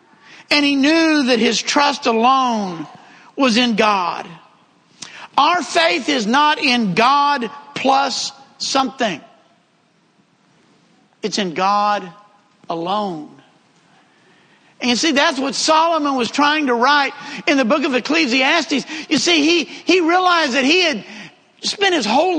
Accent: American